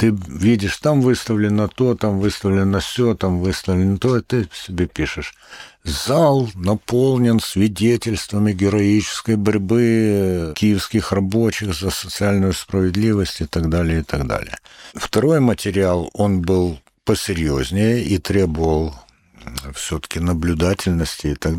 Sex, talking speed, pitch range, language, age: male, 120 wpm, 85-110 Hz, Russian, 60-79